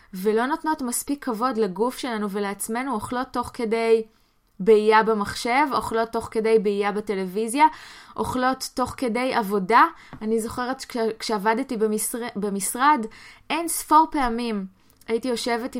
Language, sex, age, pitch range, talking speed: Hebrew, female, 20-39, 210-255 Hz, 120 wpm